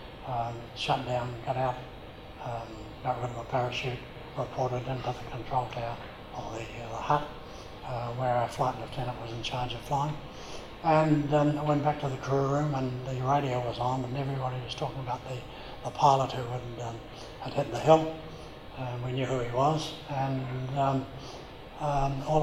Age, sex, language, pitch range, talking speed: 60-79, male, English, 125-145 Hz, 190 wpm